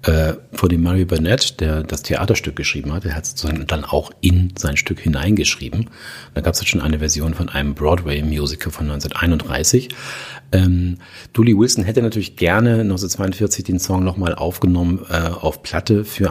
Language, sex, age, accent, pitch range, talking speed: German, male, 40-59, German, 80-105 Hz, 170 wpm